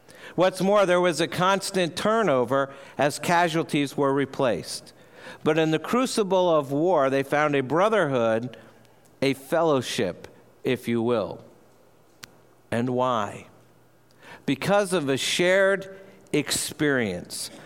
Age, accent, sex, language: 50-69, American, male, English